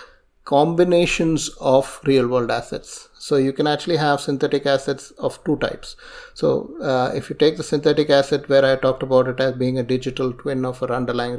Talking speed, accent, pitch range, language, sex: 185 wpm, Indian, 130-150 Hz, English, male